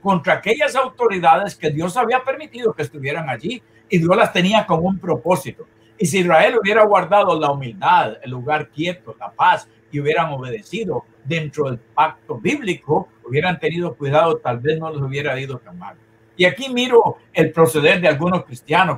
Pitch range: 145-195 Hz